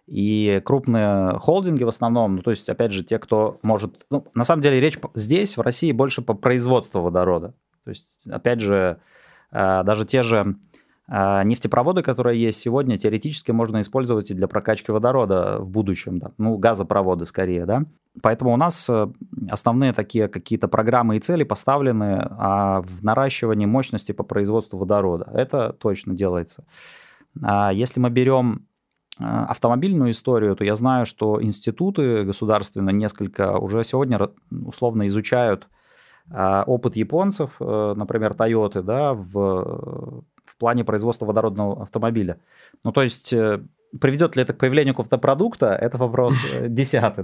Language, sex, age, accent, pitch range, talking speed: Russian, male, 20-39, native, 100-125 Hz, 135 wpm